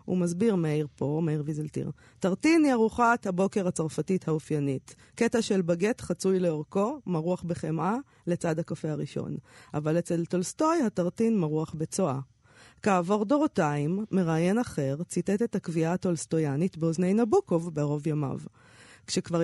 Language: Hebrew